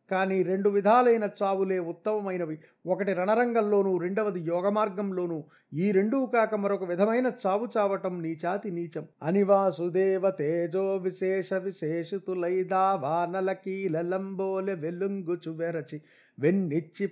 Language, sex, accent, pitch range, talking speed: Telugu, male, native, 170-195 Hz, 90 wpm